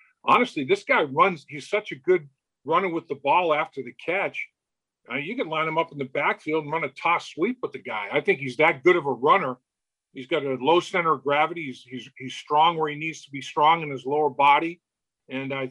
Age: 50-69